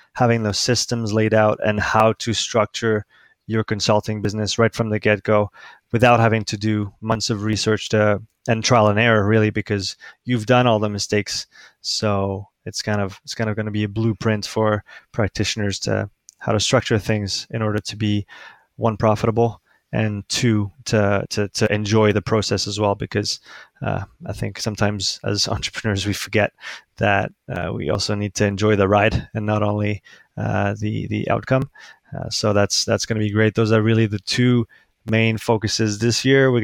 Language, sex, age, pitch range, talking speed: English, male, 20-39, 105-115 Hz, 185 wpm